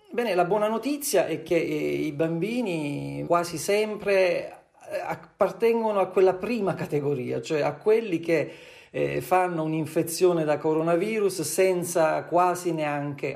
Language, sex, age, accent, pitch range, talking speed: Italian, male, 40-59, native, 140-200 Hz, 115 wpm